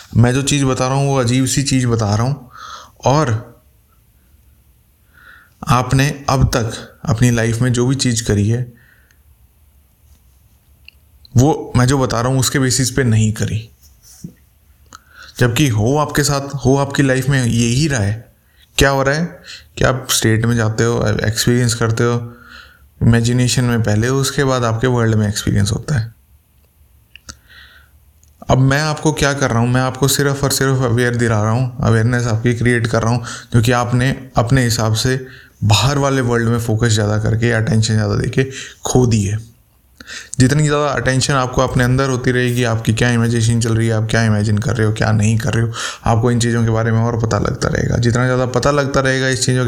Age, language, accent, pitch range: 20-39, Hindi, native, 110-130 Hz